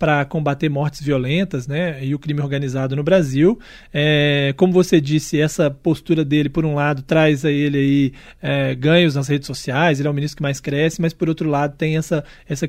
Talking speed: 195 wpm